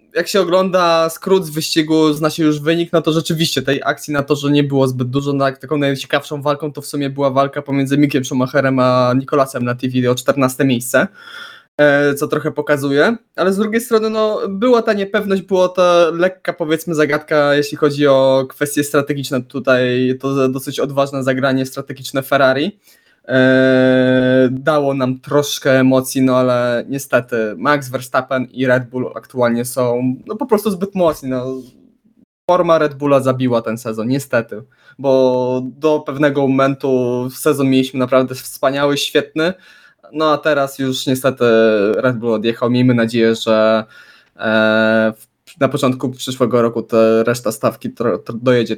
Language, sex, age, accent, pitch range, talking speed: Polish, male, 20-39, native, 125-150 Hz, 150 wpm